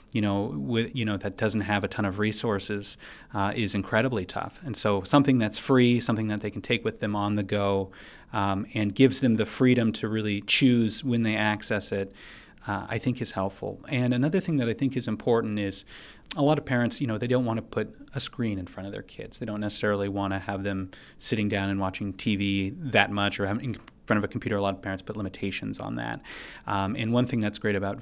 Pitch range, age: 105-120 Hz, 30-49